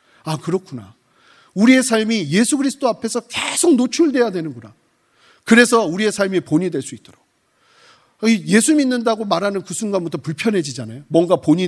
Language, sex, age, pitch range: Korean, male, 40-59, 140-225 Hz